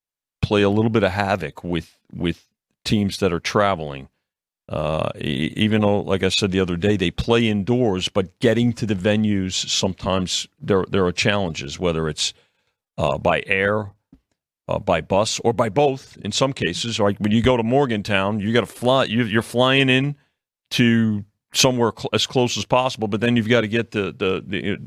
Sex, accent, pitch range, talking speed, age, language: male, American, 95-120 Hz, 190 wpm, 40-59, English